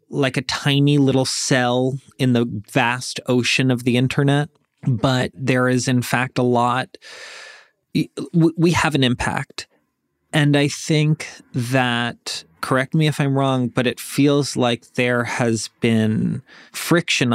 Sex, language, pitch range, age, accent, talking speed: male, English, 125-145 Hz, 30-49, American, 140 wpm